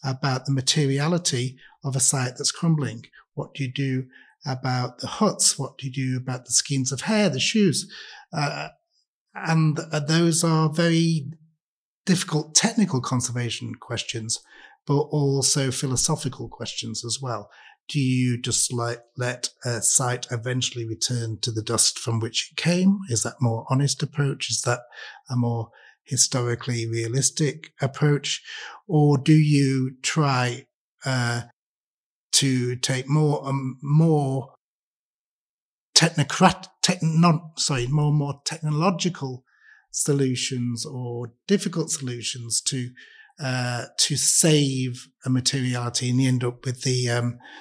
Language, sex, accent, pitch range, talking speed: English, male, British, 125-150 Hz, 130 wpm